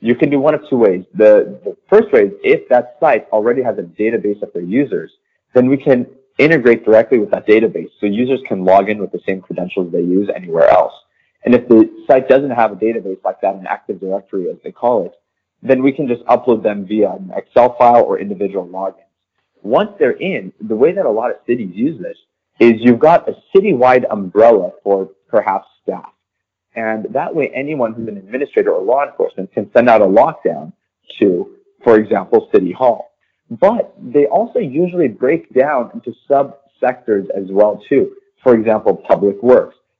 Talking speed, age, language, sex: 195 wpm, 30-49, English, male